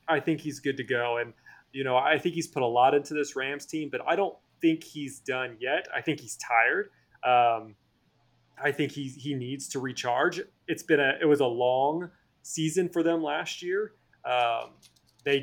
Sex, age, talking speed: male, 30-49, 200 wpm